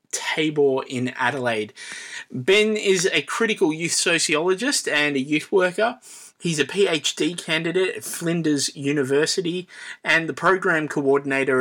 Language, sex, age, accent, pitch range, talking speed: English, male, 20-39, Australian, 125-155 Hz, 125 wpm